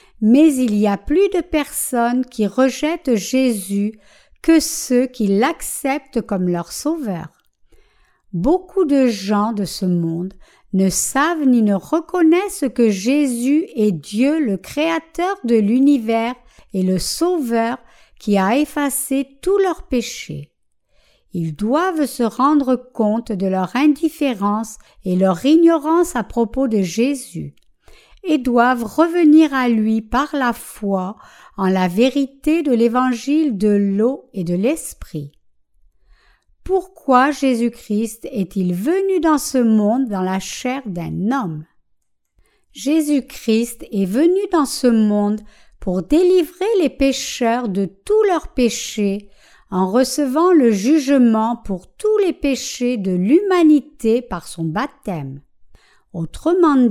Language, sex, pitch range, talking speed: French, female, 205-300 Hz, 125 wpm